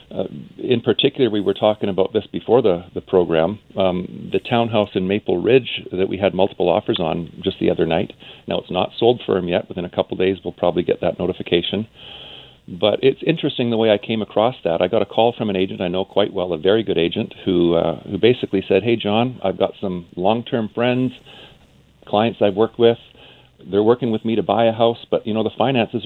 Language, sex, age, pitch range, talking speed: English, male, 40-59, 95-110 Hz, 225 wpm